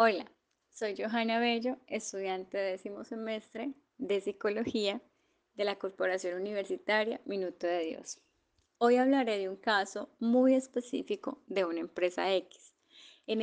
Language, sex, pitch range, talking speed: Spanish, female, 190-245 Hz, 125 wpm